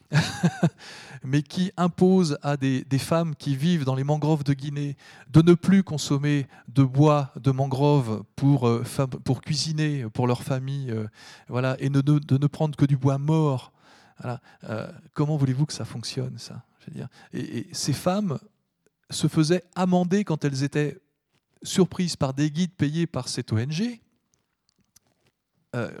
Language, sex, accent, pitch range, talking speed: French, male, French, 130-160 Hz, 160 wpm